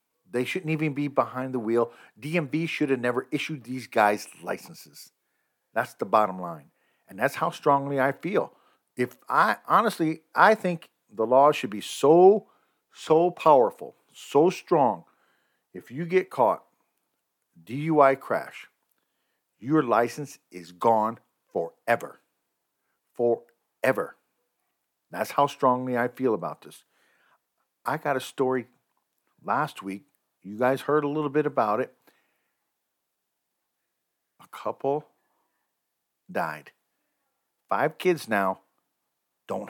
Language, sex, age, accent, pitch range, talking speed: English, male, 50-69, American, 110-150 Hz, 120 wpm